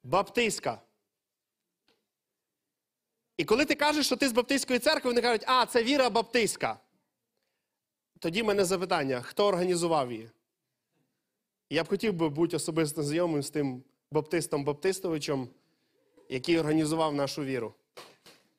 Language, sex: Ukrainian, male